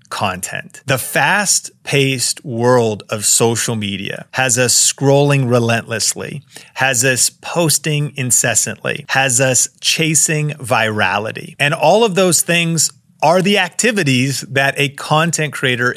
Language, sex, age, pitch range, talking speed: English, male, 30-49, 115-150 Hz, 115 wpm